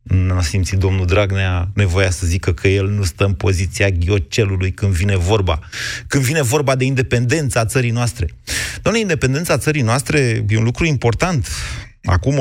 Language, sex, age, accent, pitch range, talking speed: Romanian, male, 30-49, native, 95-135 Hz, 160 wpm